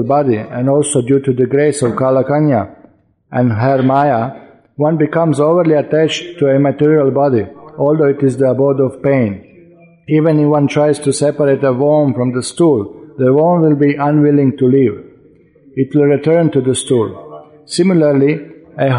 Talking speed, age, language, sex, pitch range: 165 wpm, 50-69, English, male, 135-155 Hz